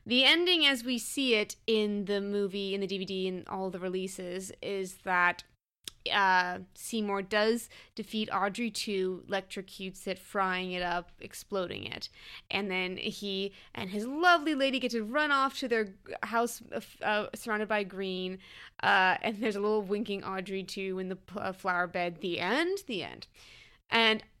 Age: 20-39